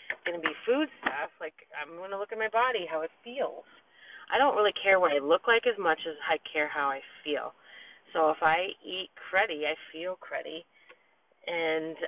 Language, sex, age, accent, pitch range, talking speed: English, female, 30-49, American, 155-230 Hz, 205 wpm